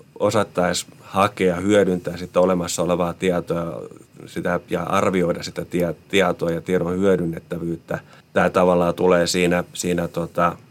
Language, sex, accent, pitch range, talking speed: Finnish, male, native, 90-95 Hz, 125 wpm